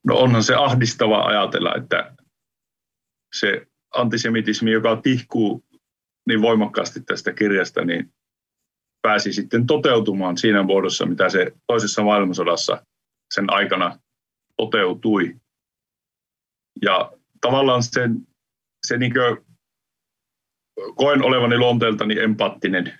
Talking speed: 95 wpm